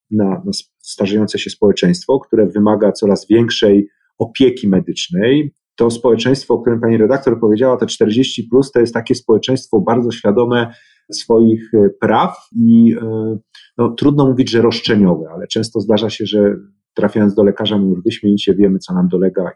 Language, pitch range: Polish, 105-130 Hz